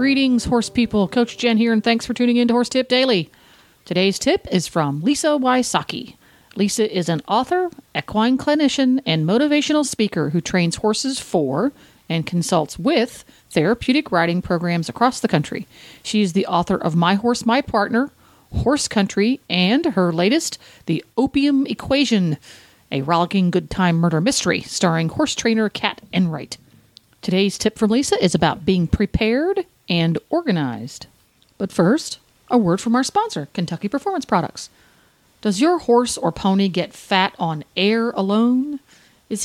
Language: English